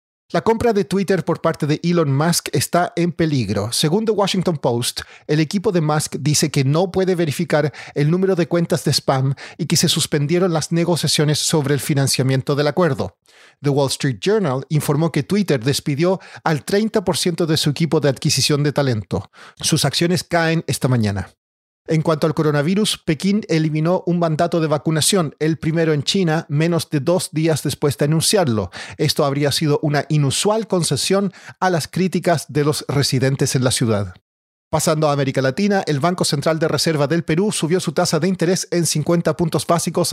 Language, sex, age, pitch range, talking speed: Spanish, male, 40-59, 145-175 Hz, 180 wpm